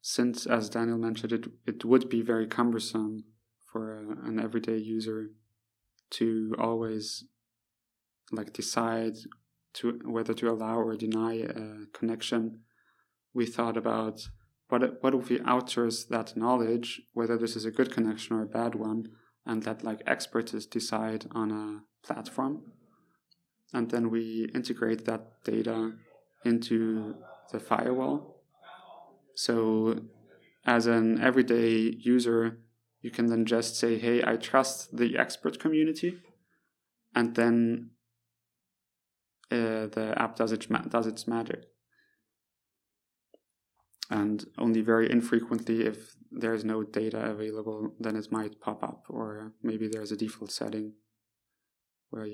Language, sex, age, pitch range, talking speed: English, male, 30-49, 110-115 Hz, 130 wpm